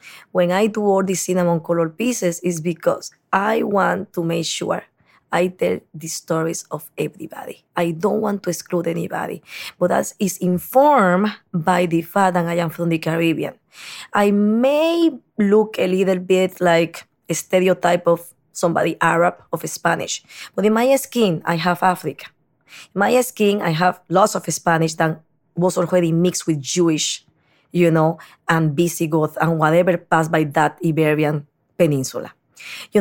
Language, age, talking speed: English, 20-39, 160 wpm